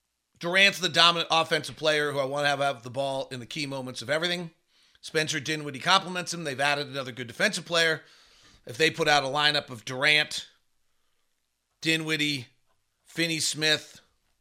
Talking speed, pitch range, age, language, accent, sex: 160 wpm, 140-180 Hz, 40-59, English, American, male